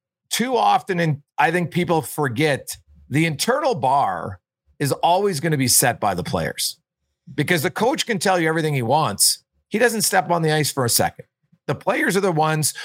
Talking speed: 195 wpm